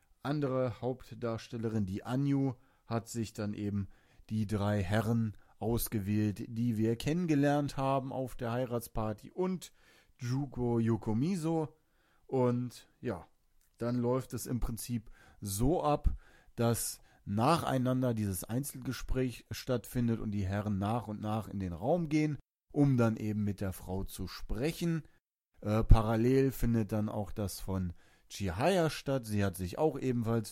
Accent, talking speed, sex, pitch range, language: German, 135 wpm, male, 105-130 Hz, German